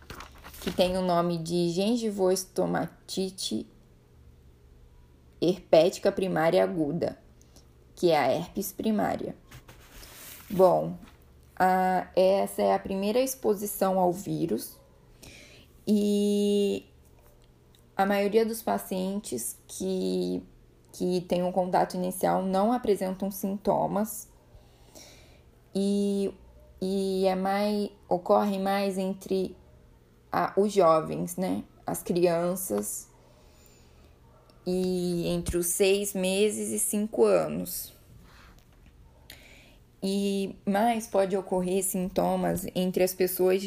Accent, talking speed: Brazilian, 90 wpm